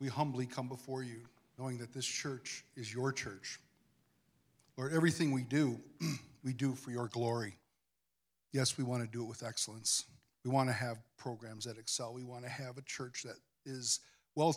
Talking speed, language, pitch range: 185 wpm, English, 110-140 Hz